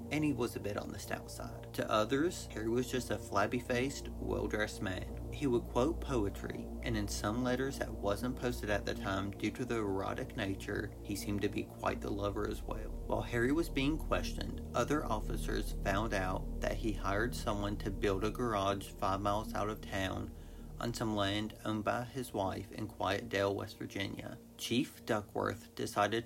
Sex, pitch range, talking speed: male, 100-115 Hz, 190 wpm